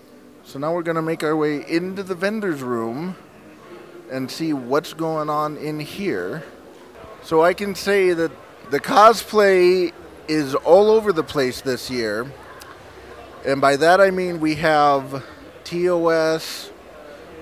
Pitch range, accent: 145-170 Hz, American